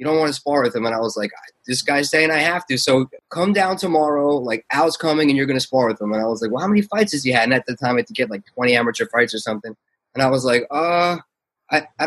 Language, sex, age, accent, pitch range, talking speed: English, male, 20-39, American, 120-150 Hz, 315 wpm